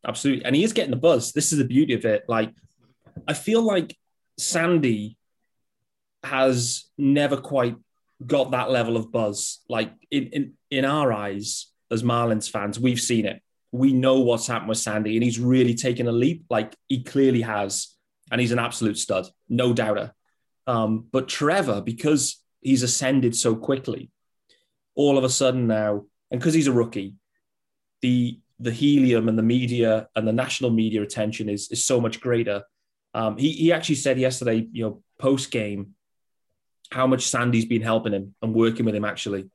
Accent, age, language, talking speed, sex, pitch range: British, 30-49, English, 175 wpm, male, 110-135 Hz